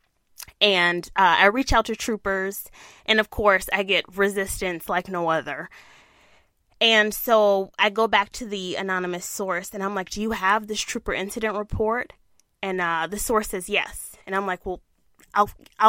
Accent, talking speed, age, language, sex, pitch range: American, 175 wpm, 20-39, English, female, 190-225 Hz